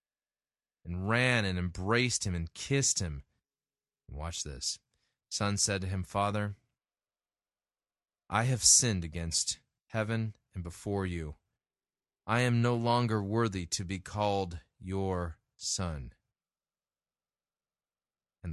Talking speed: 110 wpm